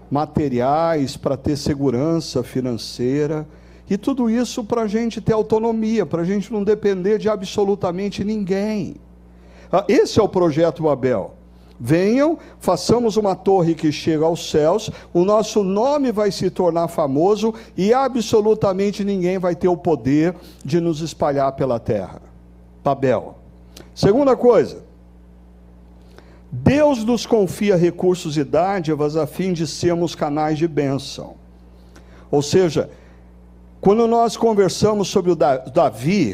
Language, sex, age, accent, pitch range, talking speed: Portuguese, male, 60-79, Brazilian, 135-200 Hz, 125 wpm